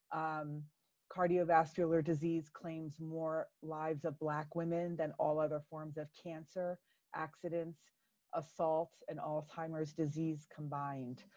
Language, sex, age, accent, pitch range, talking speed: English, female, 30-49, American, 155-180 Hz, 110 wpm